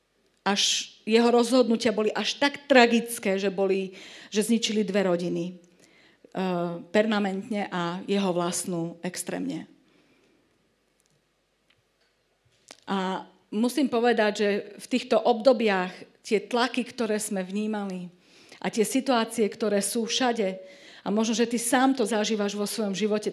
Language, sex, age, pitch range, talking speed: Slovak, female, 50-69, 195-235 Hz, 120 wpm